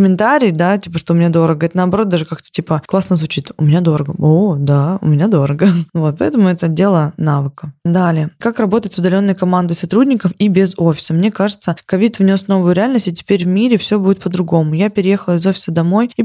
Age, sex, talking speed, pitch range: 20-39, female, 205 wpm, 170-205 Hz